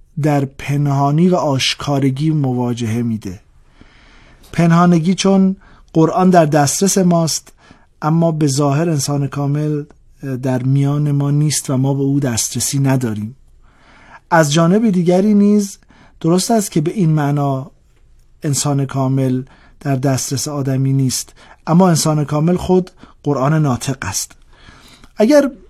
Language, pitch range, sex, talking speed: Persian, 135-165 Hz, male, 120 wpm